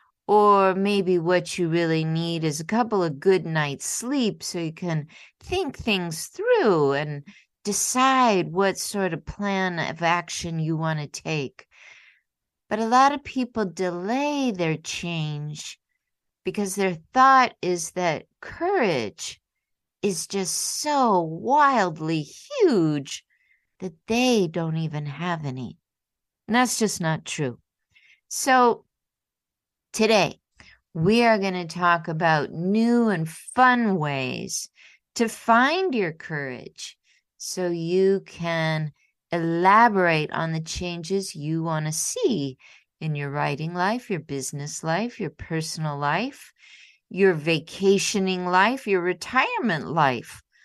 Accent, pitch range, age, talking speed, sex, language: American, 160-220 Hz, 50-69, 125 wpm, female, English